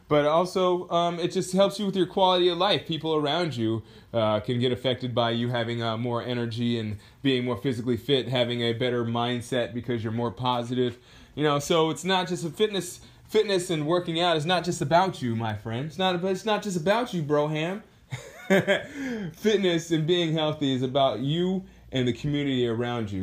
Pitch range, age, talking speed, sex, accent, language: 120-175 Hz, 20-39, 200 wpm, male, American, English